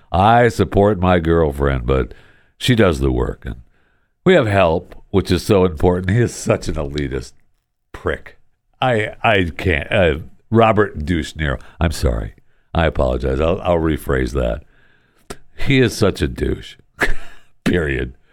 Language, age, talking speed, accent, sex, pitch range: English, 60-79, 145 wpm, American, male, 80-120 Hz